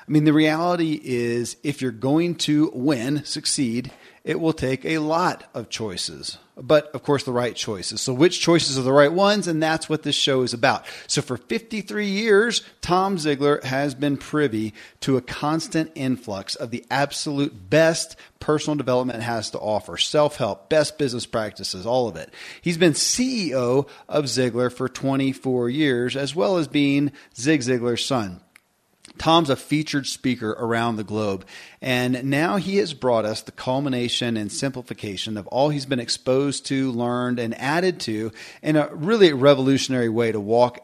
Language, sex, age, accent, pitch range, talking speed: English, male, 40-59, American, 120-155 Hz, 170 wpm